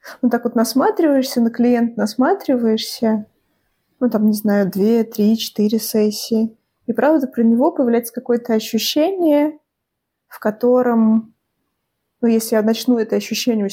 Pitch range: 225-265 Hz